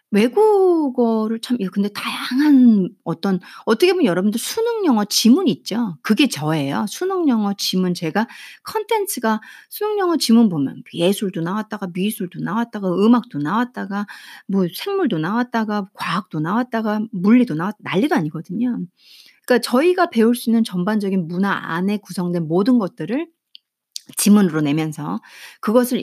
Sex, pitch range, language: female, 180-245 Hz, Korean